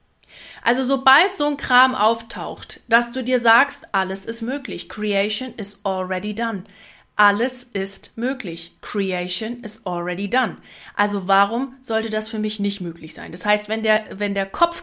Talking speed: 160 wpm